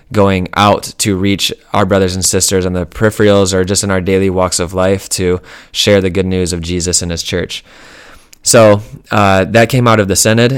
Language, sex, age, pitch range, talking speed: English, male, 20-39, 90-100 Hz, 210 wpm